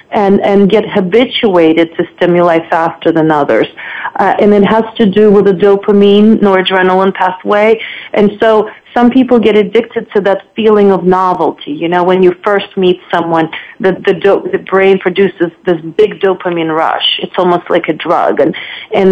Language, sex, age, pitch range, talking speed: English, female, 30-49, 185-220 Hz, 175 wpm